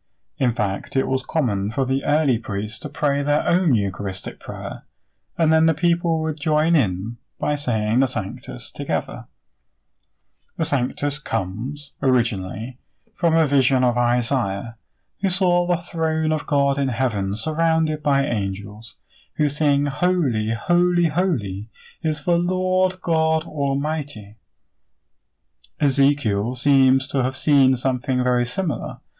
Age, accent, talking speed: 30-49, British, 135 wpm